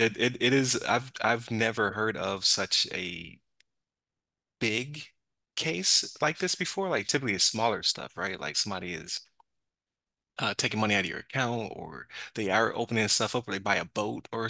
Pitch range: 100-125 Hz